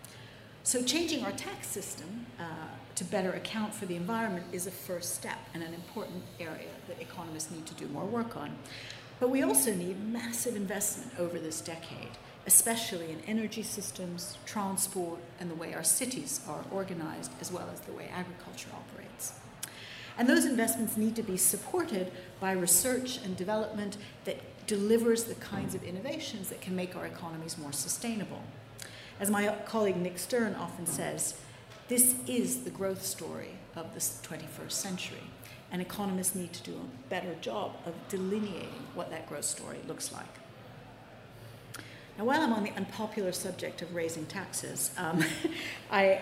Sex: female